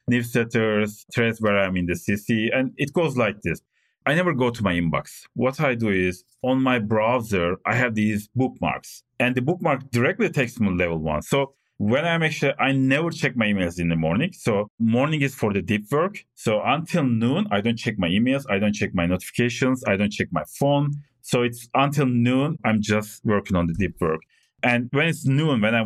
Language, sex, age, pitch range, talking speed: English, male, 40-59, 100-130 Hz, 215 wpm